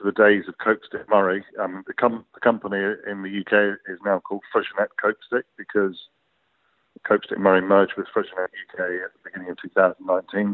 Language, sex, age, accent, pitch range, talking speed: English, male, 50-69, British, 95-105 Hz, 170 wpm